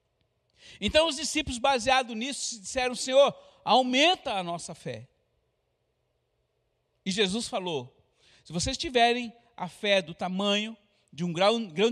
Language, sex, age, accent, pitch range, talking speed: Portuguese, male, 60-79, Brazilian, 190-245 Hz, 125 wpm